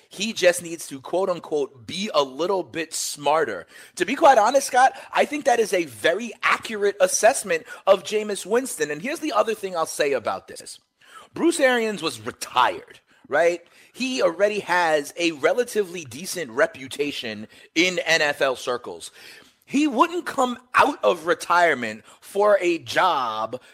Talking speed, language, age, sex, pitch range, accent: 150 wpm, English, 30-49, male, 150-255 Hz, American